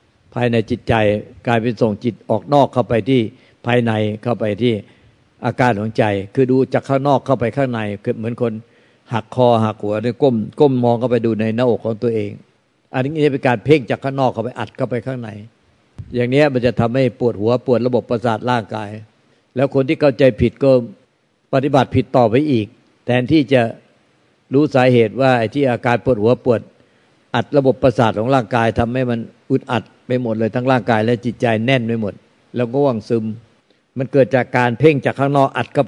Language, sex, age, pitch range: Thai, male, 60-79, 115-135 Hz